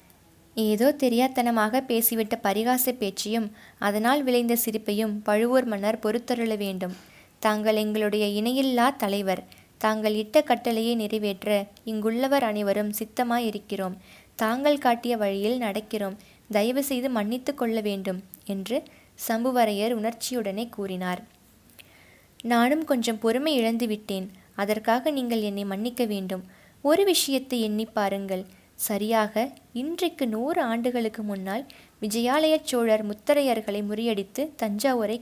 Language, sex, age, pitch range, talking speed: Tamil, female, 20-39, 210-245 Hz, 95 wpm